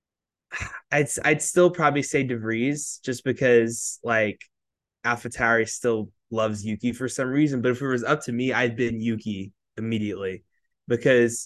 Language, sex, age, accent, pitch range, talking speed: English, male, 20-39, American, 115-140 Hz, 145 wpm